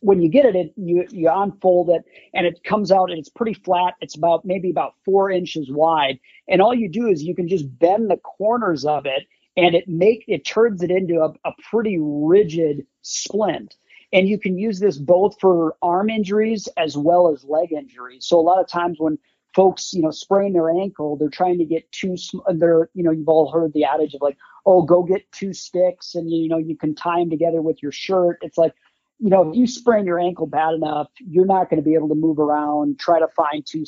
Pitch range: 160-190 Hz